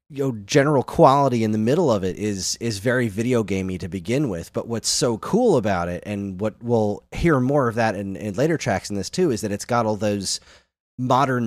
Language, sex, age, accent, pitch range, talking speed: English, male, 30-49, American, 95-120 Hz, 230 wpm